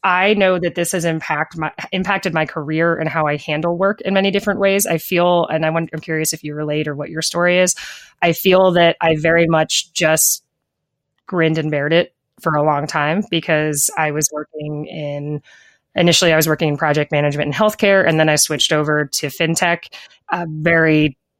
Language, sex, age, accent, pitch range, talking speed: English, female, 20-39, American, 150-170 Hz, 195 wpm